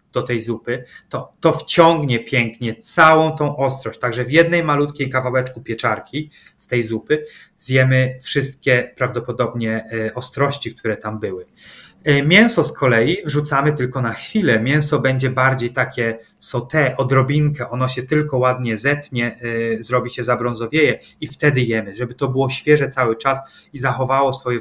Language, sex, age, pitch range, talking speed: Polish, male, 30-49, 120-145 Hz, 145 wpm